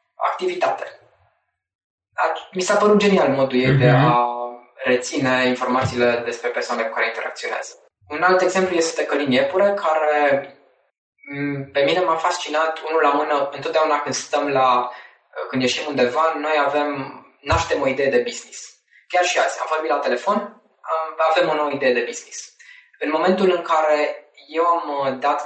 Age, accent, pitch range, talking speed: 20-39, native, 135-205 Hz, 150 wpm